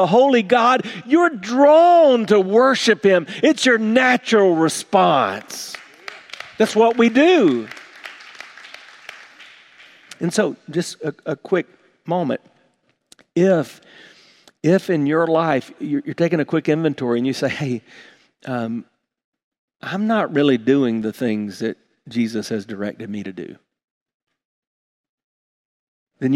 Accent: American